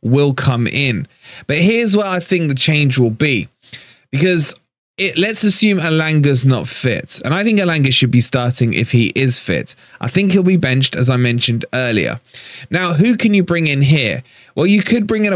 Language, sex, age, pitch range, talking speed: English, male, 20-39, 125-165 Hz, 200 wpm